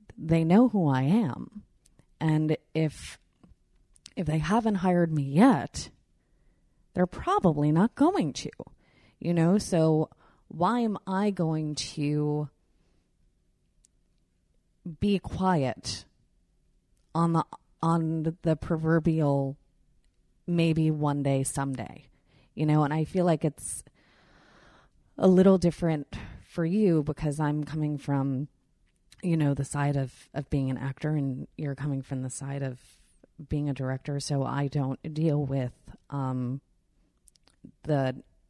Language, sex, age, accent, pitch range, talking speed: English, female, 30-49, American, 140-165 Hz, 125 wpm